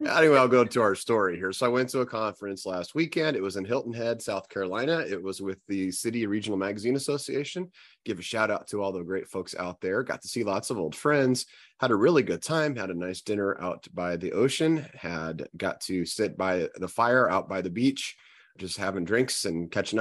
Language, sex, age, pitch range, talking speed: English, male, 30-49, 95-125 Hz, 230 wpm